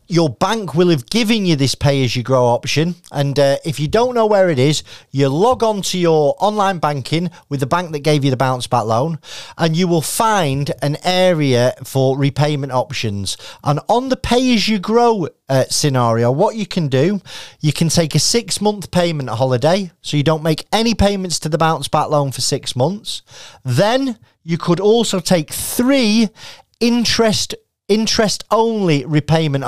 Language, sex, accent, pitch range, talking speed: English, male, British, 140-190 Hz, 165 wpm